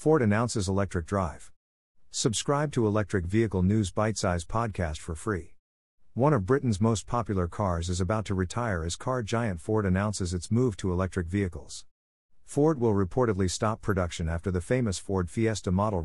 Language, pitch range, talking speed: English, 90-110 Hz, 170 wpm